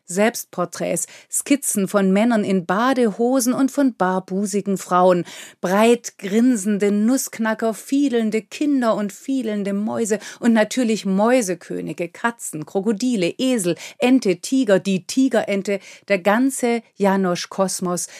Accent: German